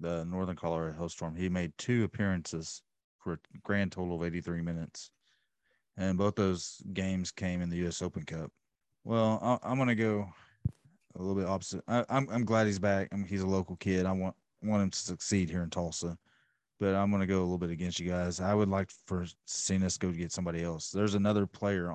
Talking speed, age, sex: 225 wpm, 30-49, male